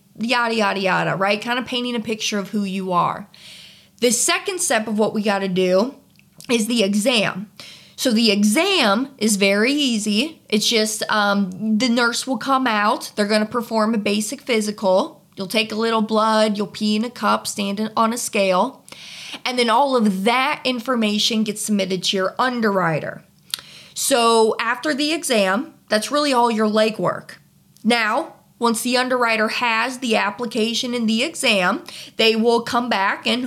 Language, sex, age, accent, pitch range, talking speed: English, female, 20-39, American, 210-265 Hz, 170 wpm